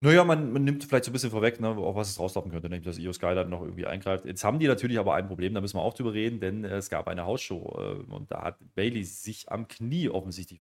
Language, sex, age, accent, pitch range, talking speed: German, male, 30-49, German, 100-130 Hz, 285 wpm